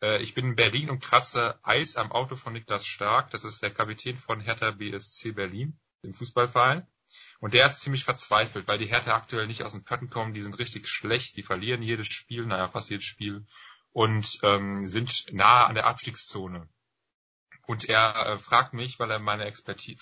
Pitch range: 105-130 Hz